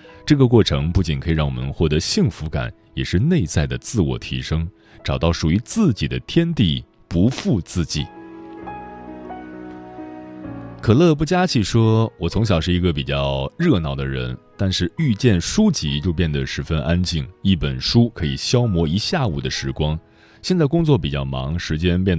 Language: Chinese